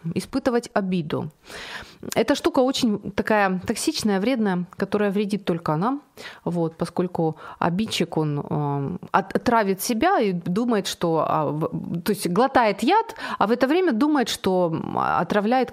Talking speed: 130 wpm